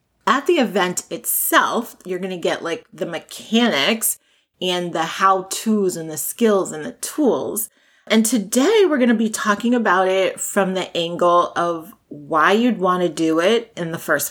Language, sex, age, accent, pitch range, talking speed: English, female, 30-49, American, 175-235 Hz, 175 wpm